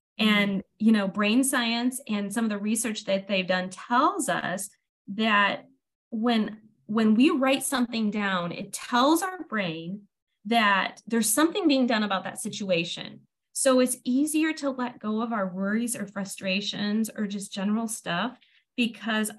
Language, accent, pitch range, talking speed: English, American, 190-245 Hz, 155 wpm